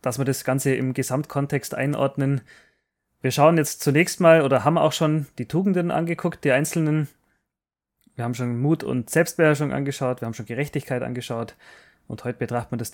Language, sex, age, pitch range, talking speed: German, male, 20-39, 125-155 Hz, 175 wpm